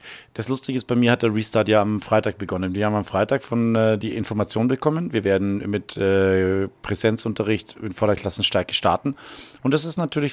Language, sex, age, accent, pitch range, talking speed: German, male, 40-59, German, 105-130 Hz, 190 wpm